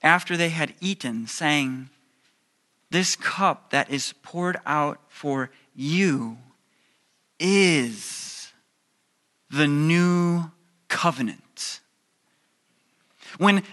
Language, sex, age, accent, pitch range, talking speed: English, male, 30-49, American, 165-225 Hz, 80 wpm